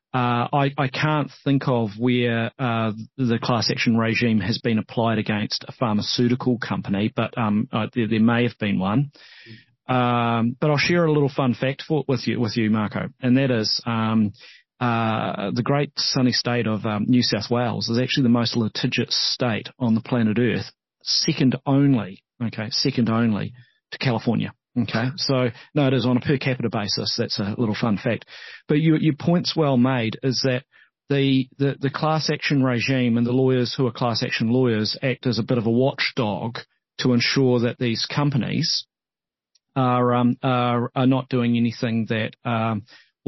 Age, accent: 30-49, Australian